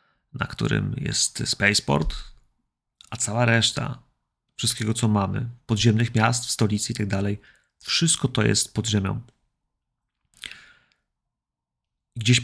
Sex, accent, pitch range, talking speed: male, native, 110-130 Hz, 110 wpm